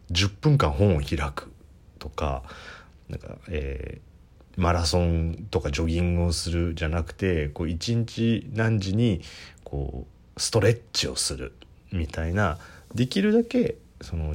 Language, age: Japanese, 30-49